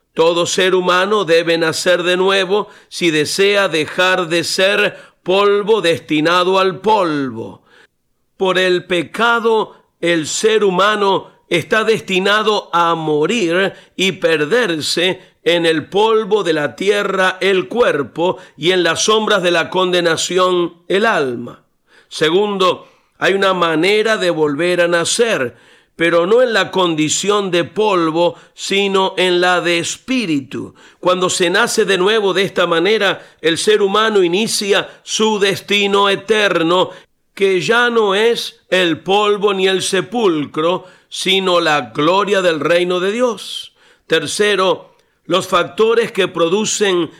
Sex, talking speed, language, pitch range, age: male, 130 wpm, Spanish, 170-205 Hz, 50-69